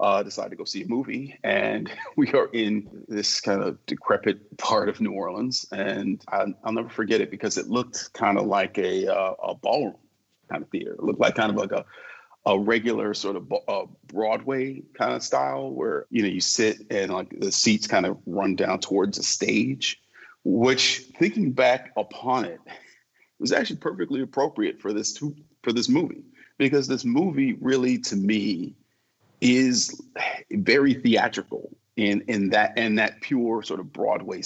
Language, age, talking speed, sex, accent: English, 40-59, 180 wpm, male, American